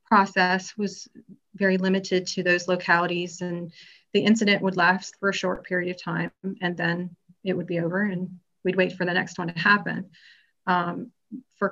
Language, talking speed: English, 180 wpm